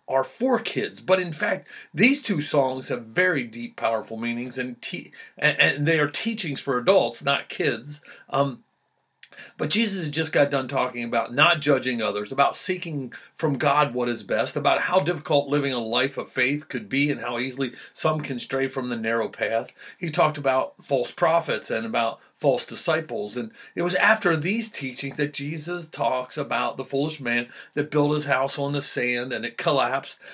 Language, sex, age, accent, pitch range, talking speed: English, male, 40-59, American, 125-165 Hz, 185 wpm